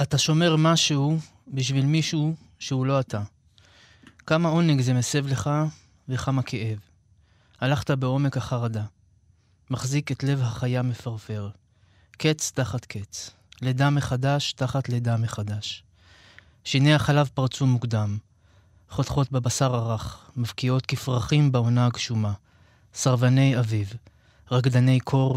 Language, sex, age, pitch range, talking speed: Hebrew, male, 20-39, 105-135 Hz, 110 wpm